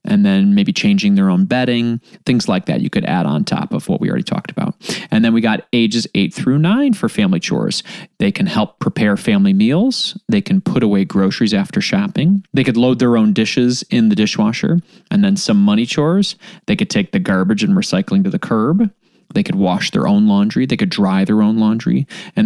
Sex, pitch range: male, 145-210 Hz